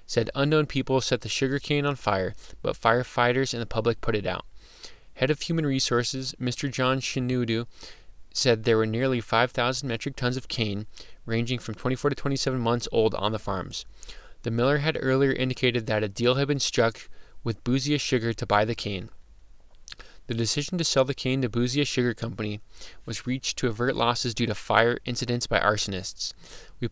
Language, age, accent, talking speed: English, 20-39, American, 185 wpm